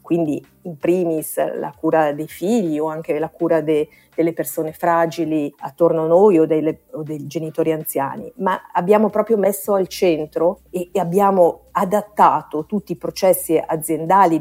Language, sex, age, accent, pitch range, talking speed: Italian, female, 50-69, native, 155-190 Hz, 150 wpm